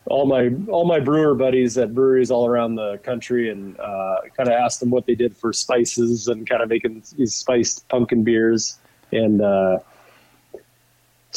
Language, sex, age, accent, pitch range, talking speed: English, male, 30-49, American, 115-135 Hz, 175 wpm